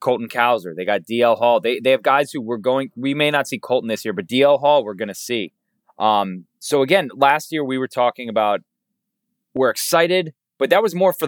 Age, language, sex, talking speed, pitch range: 20-39, English, male, 230 wpm, 105-135 Hz